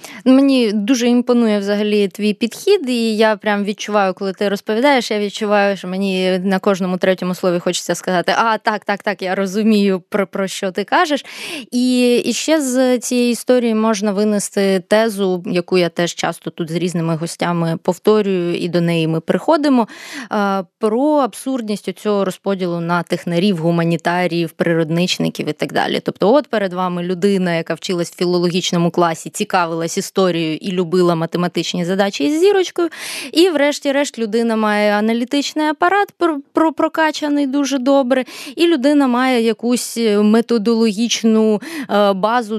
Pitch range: 185-245 Hz